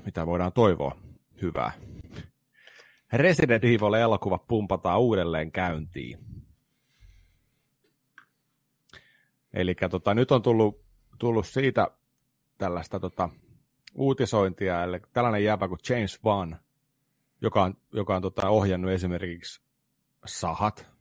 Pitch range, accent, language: 90-110 Hz, native, Finnish